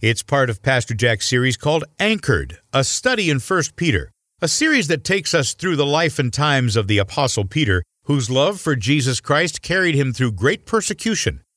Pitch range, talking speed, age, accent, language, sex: 115-155 Hz, 190 wpm, 50-69, American, English, male